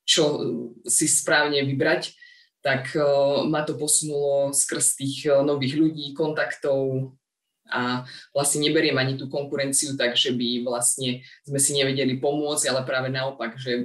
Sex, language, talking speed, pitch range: female, Slovak, 130 wpm, 135-160 Hz